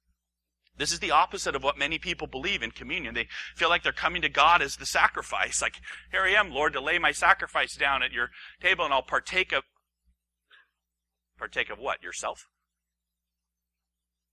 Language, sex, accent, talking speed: English, male, American, 175 wpm